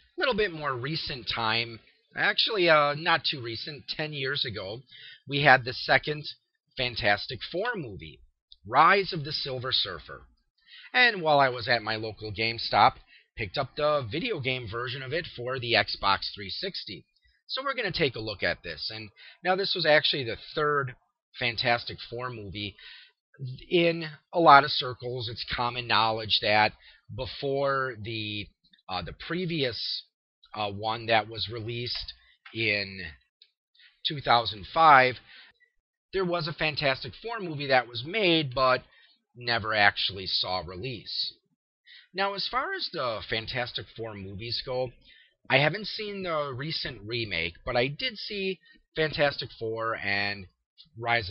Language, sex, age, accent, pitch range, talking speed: English, male, 30-49, American, 110-160 Hz, 145 wpm